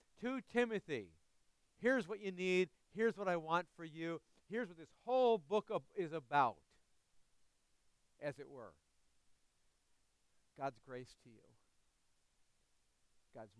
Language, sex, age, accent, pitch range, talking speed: English, male, 50-69, American, 145-225 Hz, 120 wpm